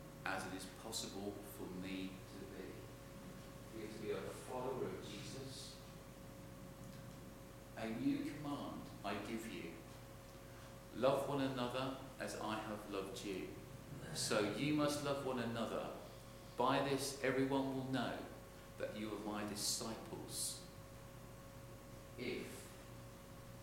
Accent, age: British, 50-69